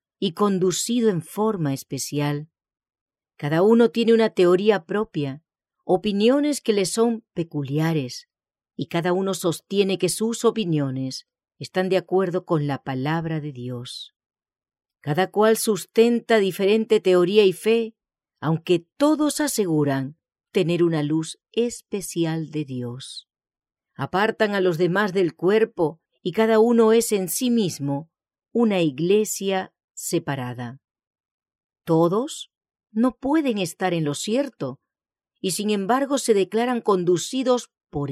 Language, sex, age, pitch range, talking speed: English, female, 40-59, 155-220 Hz, 120 wpm